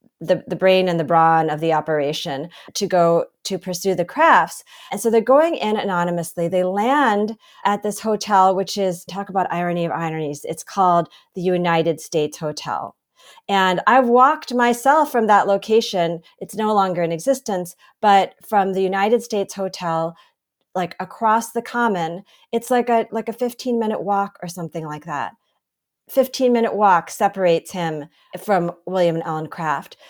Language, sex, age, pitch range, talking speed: English, female, 40-59, 170-220 Hz, 165 wpm